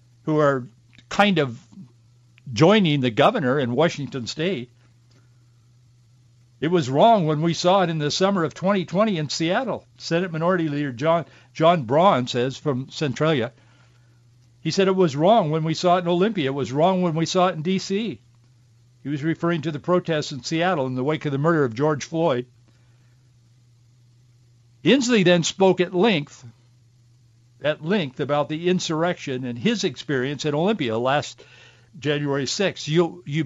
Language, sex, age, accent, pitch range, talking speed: English, male, 60-79, American, 120-165 Hz, 160 wpm